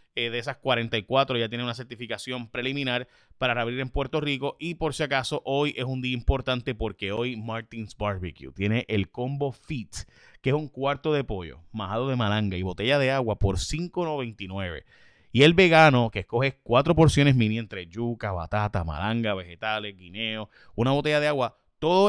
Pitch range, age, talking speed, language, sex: 105-140 Hz, 30-49, 175 wpm, Spanish, male